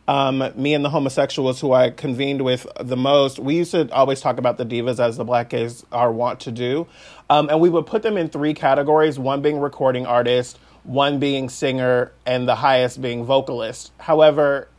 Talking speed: 200 wpm